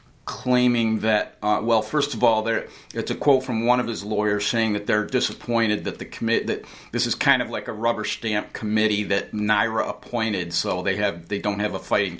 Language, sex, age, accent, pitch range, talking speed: English, male, 50-69, American, 95-115 Hz, 215 wpm